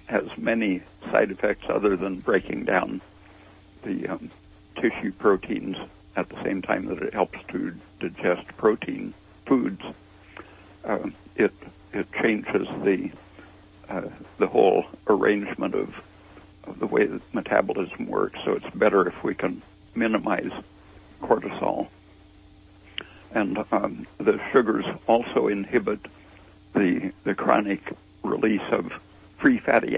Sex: male